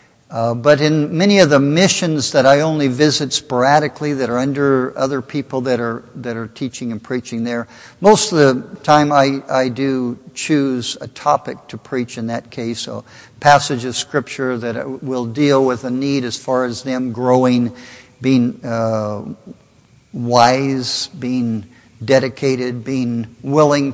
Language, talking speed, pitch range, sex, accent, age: English, 155 wpm, 120-145 Hz, male, American, 60-79